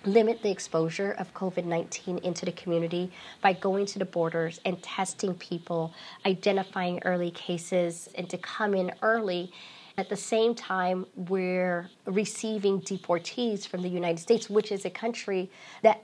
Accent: American